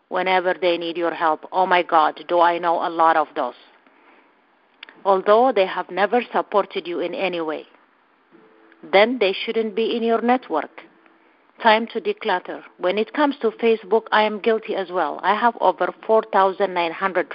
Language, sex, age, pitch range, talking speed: English, female, 50-69, 170-210 Hz, 165 wpm